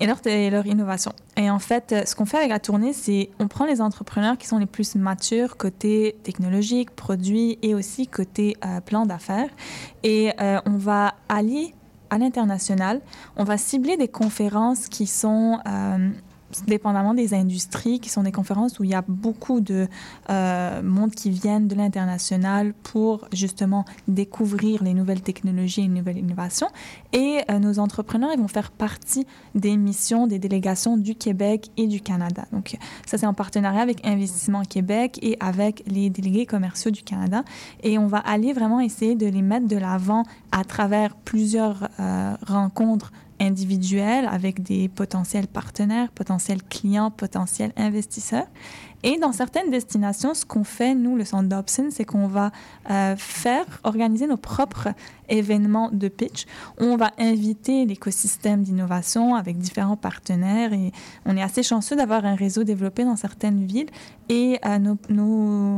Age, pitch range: 10-29, 195-225 Hz